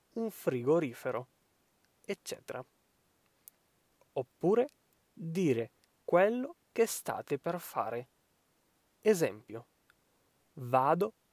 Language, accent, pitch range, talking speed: Italian, native, 125-210 Hz, 65 wpm